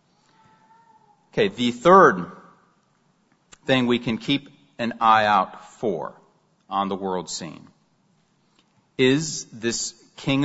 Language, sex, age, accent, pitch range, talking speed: English, male, 40-59, American, 105-140 Hz, 105 wpm